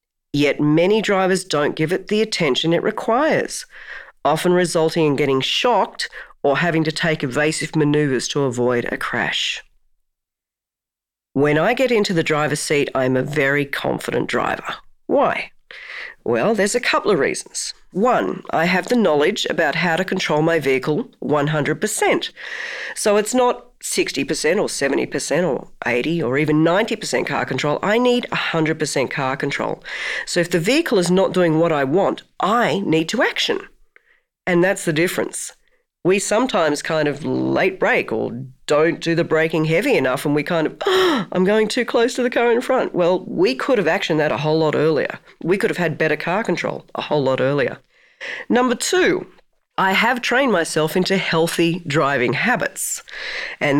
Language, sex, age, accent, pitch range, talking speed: English, female, 40-59, Australian, 150-210 Hz, 170 wpm